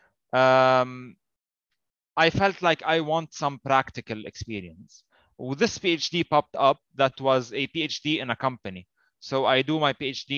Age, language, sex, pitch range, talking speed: 20-39, Arabic, male, 125-155 Hz, 150 wpm